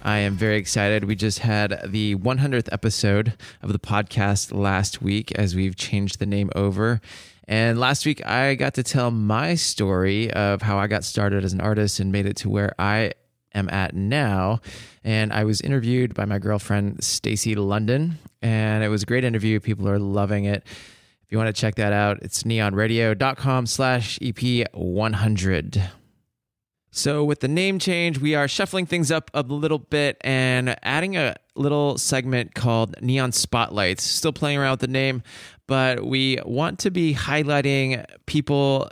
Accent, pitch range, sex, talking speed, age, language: American, 105-135 Hz, male, 170 wpm, 20-39, English